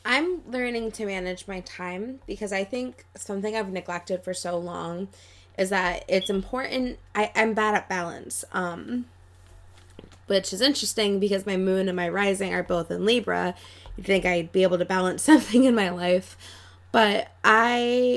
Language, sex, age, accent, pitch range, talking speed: English, female, 20-39, American, 175-210 Hz, 165 wpm